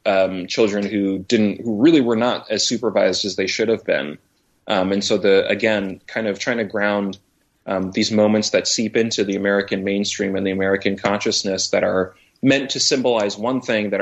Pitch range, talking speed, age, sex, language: 95-110 Hz, 195 wpm, 20-39, male, English